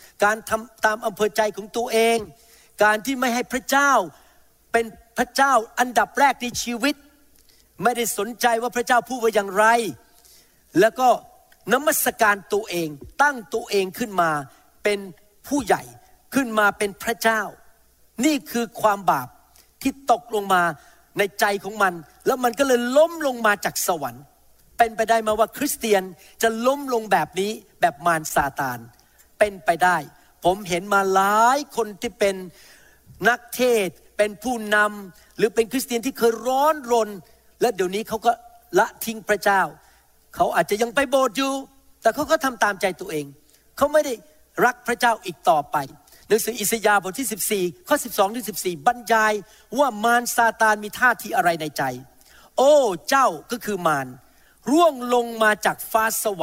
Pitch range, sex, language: 200-250 Hz, male, Thai